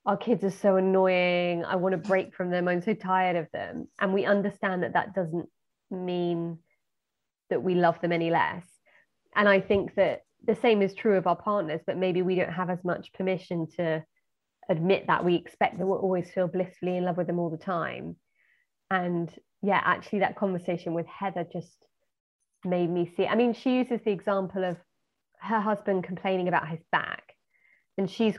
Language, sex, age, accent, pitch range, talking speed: English, female, 20-39, British, 180-210 Hz, 190 wpm